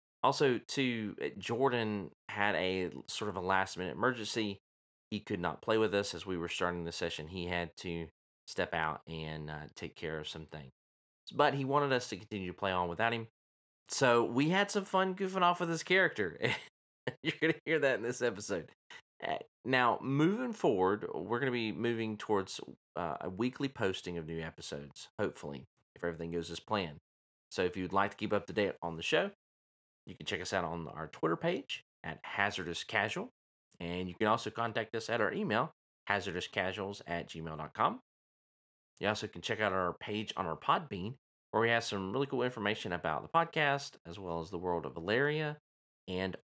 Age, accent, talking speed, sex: 30-49, American, 195 wpm, male